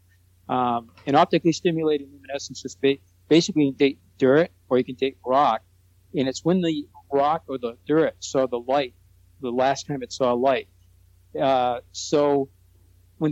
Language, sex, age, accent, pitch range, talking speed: English, male, 50-69, American, 120-150 Hz, 165 wpm